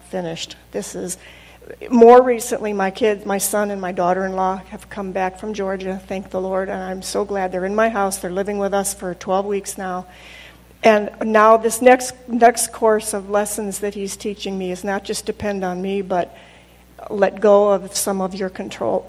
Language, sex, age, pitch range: English, female, 50-69, 180-205 Hz